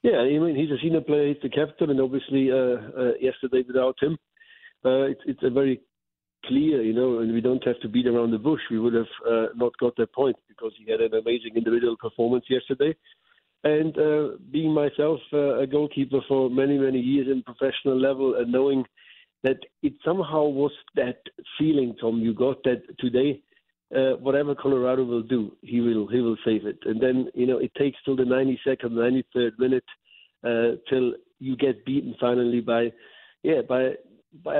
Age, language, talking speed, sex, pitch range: 50-69, English, 185 wpm, male, 120-145 Hz